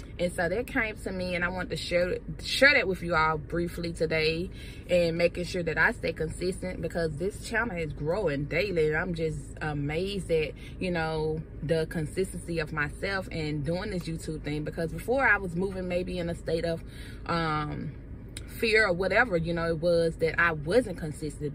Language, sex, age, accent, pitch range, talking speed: English, female, 20-39, American, 155-185 Hz, 190 wpm